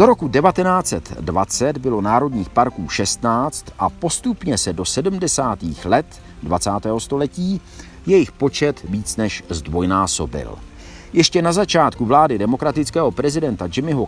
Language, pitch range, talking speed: Czech, 95-140 Hz, 115 wpm